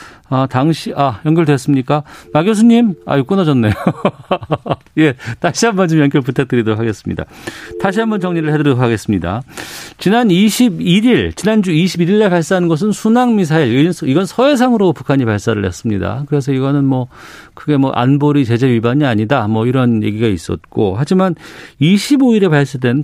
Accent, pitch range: native, 115-160 Hz